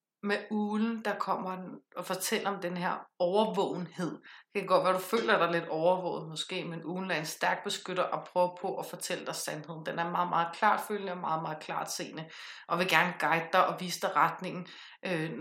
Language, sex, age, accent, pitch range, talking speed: Danish, female, 30-49, native, 170-195 Hz, 205 wpm